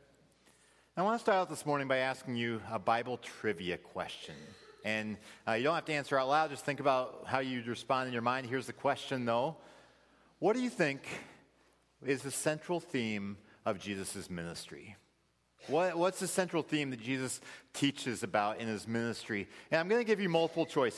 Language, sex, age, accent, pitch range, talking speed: English, male, 40-59, American, 105-155 Hz, 190 wpm